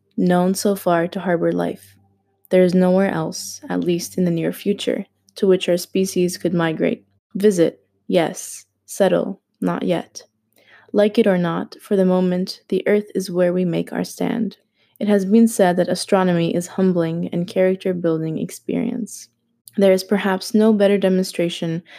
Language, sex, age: English, female, 20-39